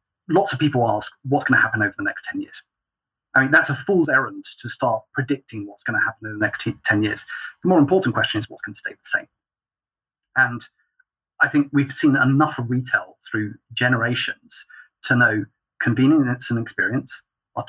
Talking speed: 195 wpm